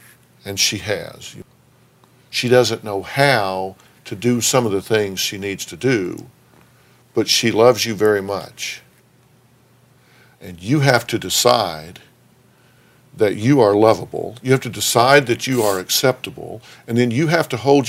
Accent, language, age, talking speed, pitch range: American, English, 50-69, 155 wpm, 95-120 Hz